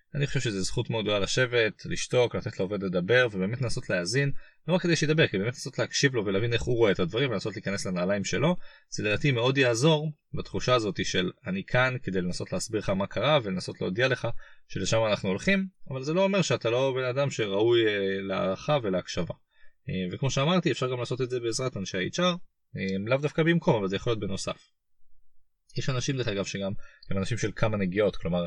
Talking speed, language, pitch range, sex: 200 wpm, Hebrew, 95-140 Hz, male